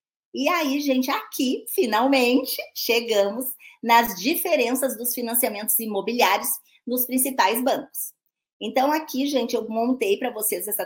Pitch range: 210-270 Hz